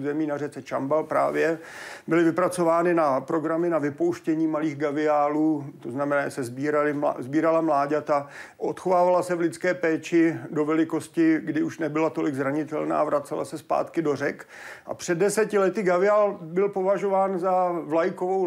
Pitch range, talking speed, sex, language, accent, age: 155-175 Hz, 145 wpm, male, Czech, native, 50-69